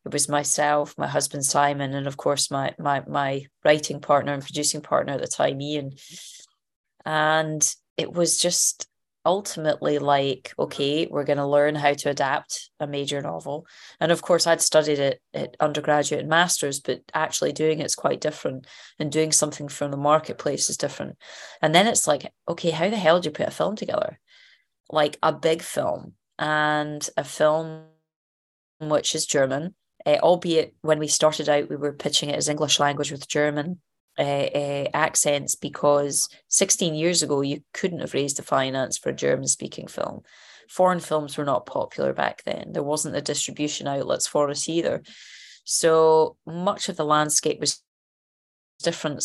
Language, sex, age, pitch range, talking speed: English, female, 20-39, 145-160 Hz, 170 wpm